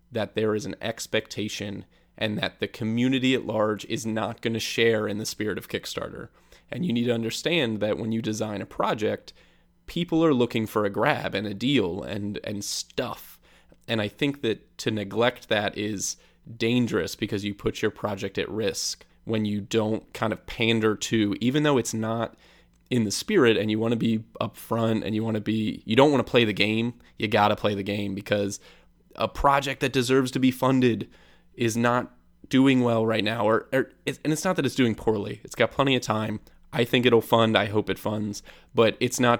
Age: 20-39